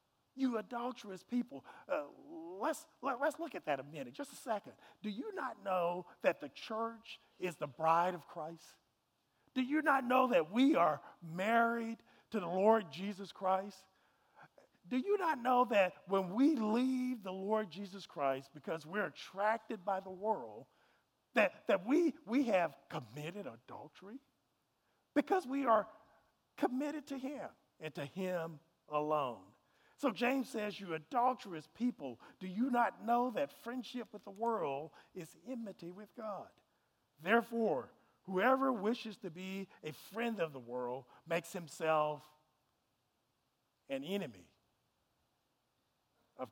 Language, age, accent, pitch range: English, 50-69, American, 160-245 Hz